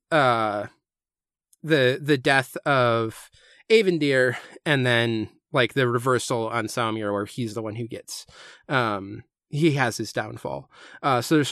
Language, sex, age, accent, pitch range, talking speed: English, male, 30-49, American, 115-140 Hz, 140 wpm